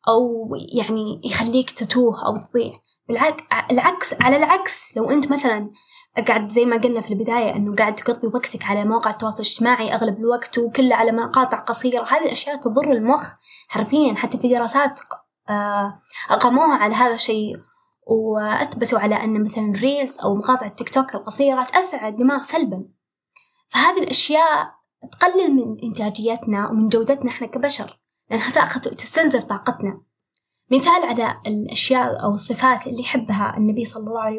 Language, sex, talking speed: Arabic, female, 140 wpm